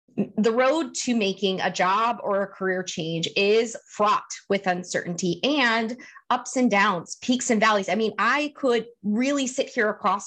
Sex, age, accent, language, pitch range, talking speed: female, 30-49, American, English, 195-250 Hz, 170 wpm